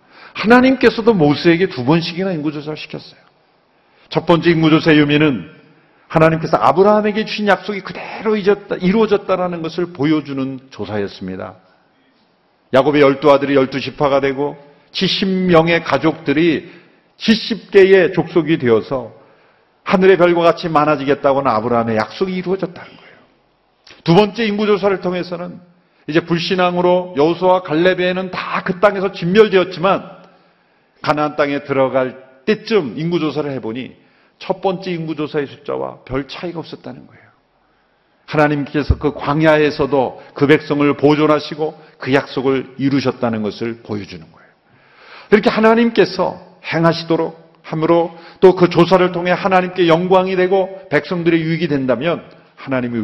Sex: male